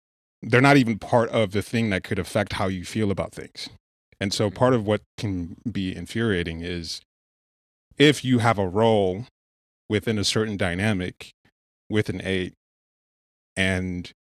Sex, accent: male, American